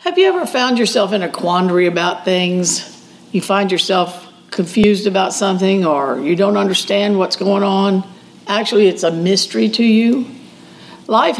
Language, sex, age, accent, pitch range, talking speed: English, female, 50-69, American, 185-220 Hz, 160 wpm